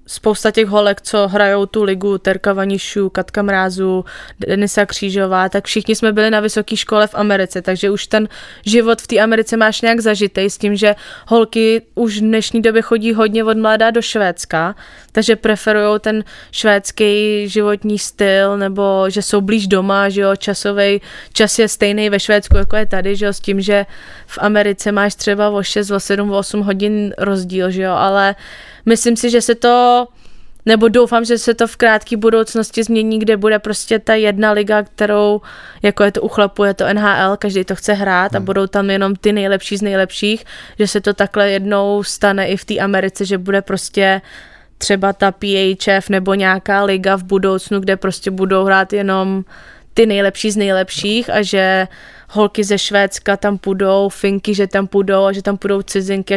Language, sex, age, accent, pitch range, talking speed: English, female, 20-39, Czech, 195-215 Hz, 180 wpm